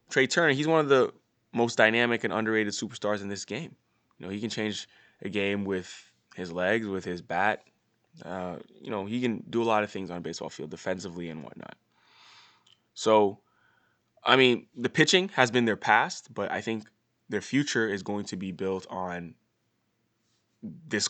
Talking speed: 185 wpm